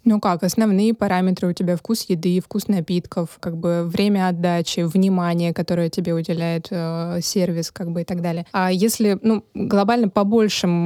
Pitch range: 180-210 Hz